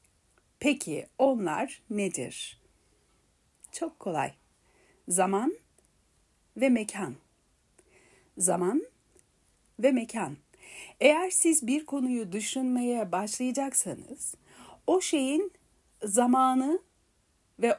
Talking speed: 70 wpm